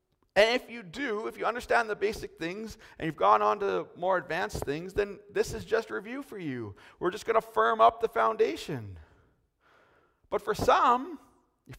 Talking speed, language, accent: 190 wpm, English, American